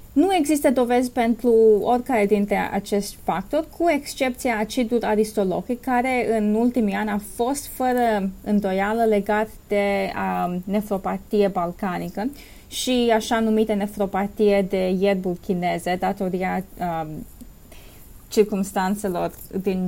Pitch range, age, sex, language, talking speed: 200-245 Hz, 20-39, female, English, 110 wpm